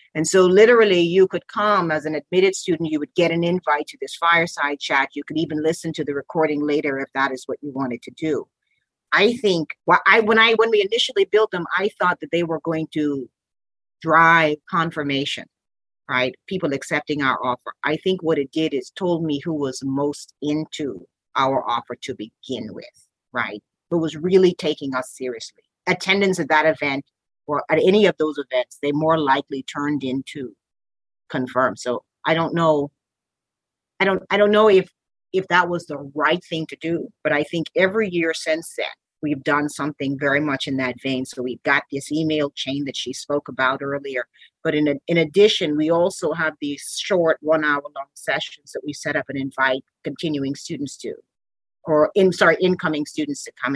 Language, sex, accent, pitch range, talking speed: English, female, American, 140-180 Hz, 190 wpm